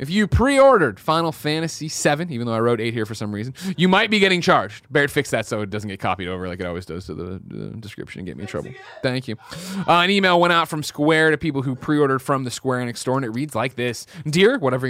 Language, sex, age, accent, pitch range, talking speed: English, male, 30-49, American, 125-185 Hz, 270 wpm